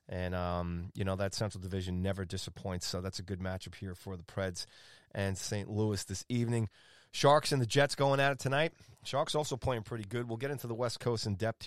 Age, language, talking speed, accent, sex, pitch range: 30-49, English, 225 wpm, American, male, 100-120 Hz